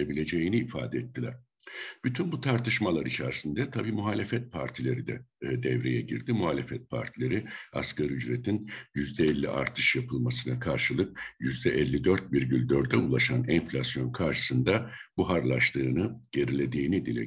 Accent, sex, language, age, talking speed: native, male, Turkish, 60-79, 100 wpm